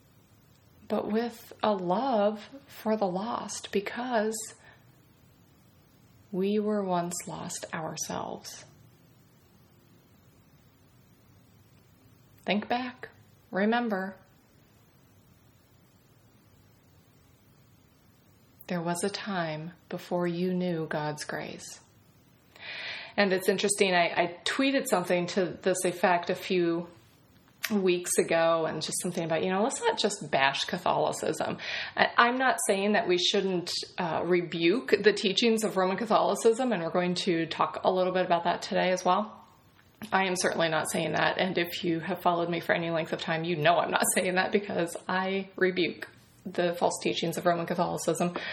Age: 30-49